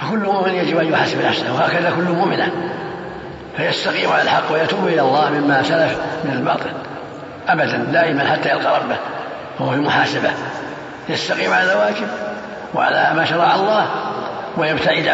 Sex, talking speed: male, 135 wpm